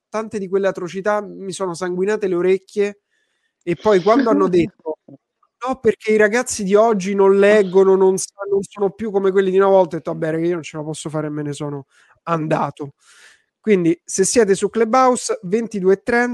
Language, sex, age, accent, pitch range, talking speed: Italian, male, 30-49, native, 185-215 Hz, 185 wpm